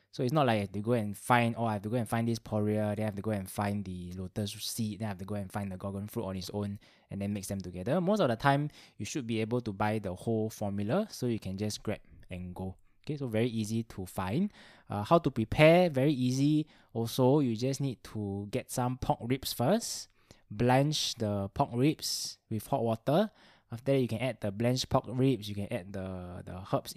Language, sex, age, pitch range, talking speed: English, male, 20-39, 100-125 Hz, 245 wpm